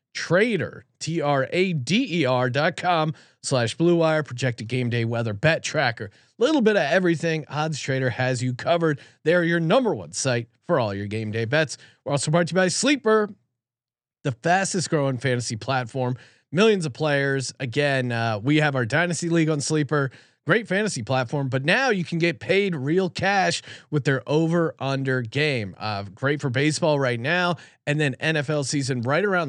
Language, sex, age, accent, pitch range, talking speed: English, male, 30-49, American, 130-175 Hz, 185 wpm